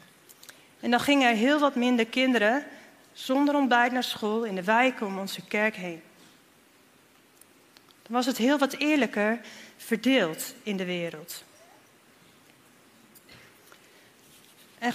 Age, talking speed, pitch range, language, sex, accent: 40-59, 120 wpm, 210-260 Hz, Dutch, female, Dutch